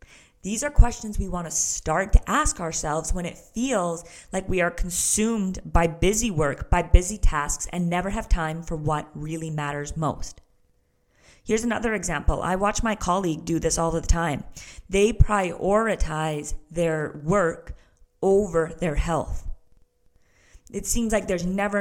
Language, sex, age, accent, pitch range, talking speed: English, female, 30-49, American, 160-205 Hz, 155 wpm